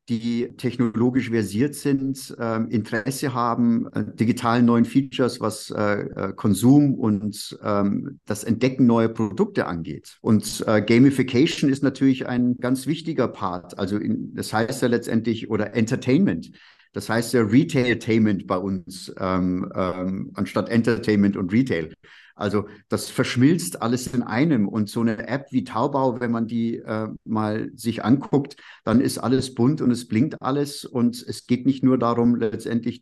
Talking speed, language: 150 wpm, German